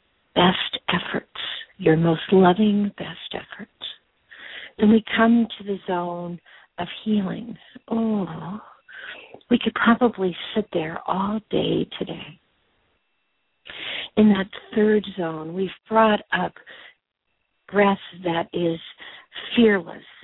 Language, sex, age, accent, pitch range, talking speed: English, female, 60-79, American, 180-225 Hz, 105 wpm